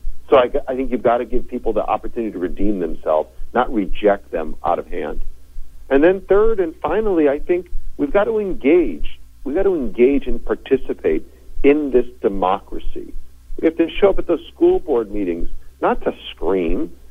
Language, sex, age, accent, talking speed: English, male, 50-69, American, 180 wpm